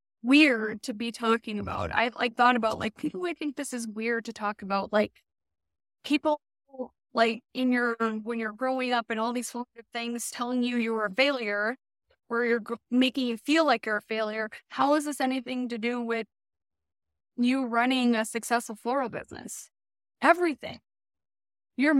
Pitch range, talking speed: 210-255 Hz, 165 wpm